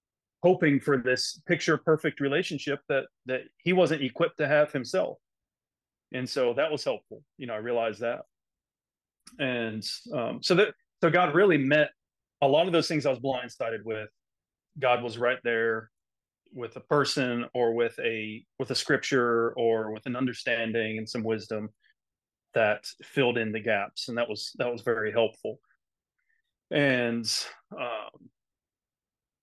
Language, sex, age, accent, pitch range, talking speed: English, male, 30-49, American, 115-140 Hz, 155 wpm